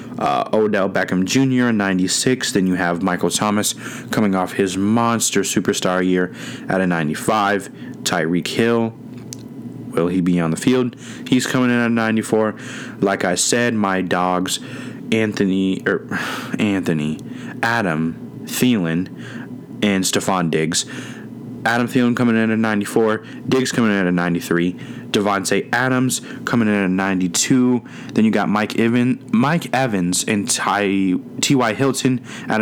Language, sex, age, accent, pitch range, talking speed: English, male, 20-39, American, 95-115 Hz, 140 wpm